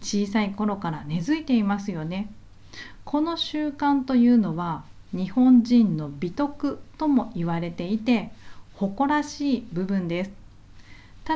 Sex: female